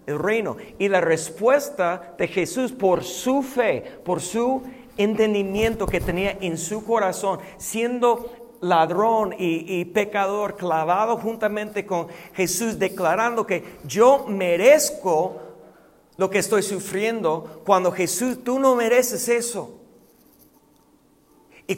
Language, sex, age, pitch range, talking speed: Spanish, male, 40-59, 170-220 Hz, 115 wpm